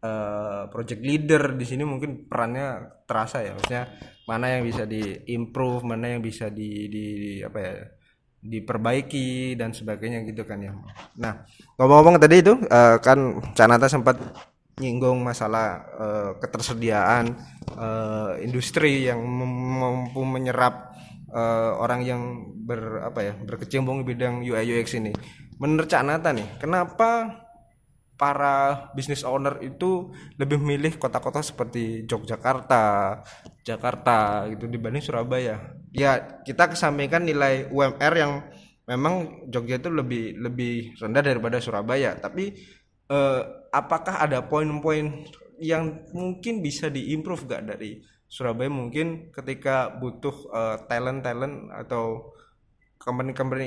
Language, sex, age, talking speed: Indonesian, male, 20-39, 115 wpm